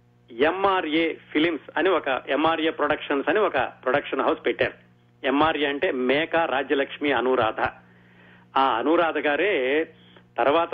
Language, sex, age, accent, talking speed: Telugu, male, 30-49, native, 110 wpm